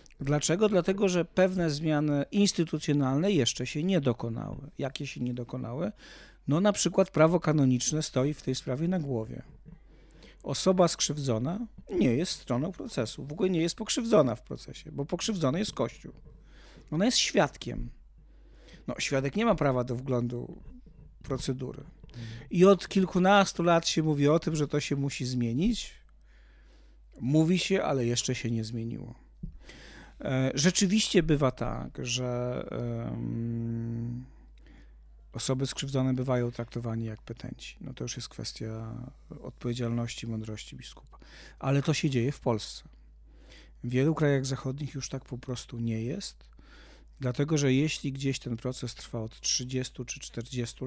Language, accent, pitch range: Polish, native, 115-155 Hz